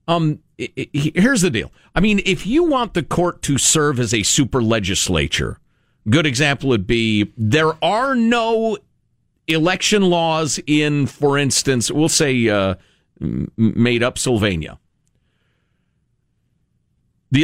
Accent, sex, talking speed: American, male, 120 wpm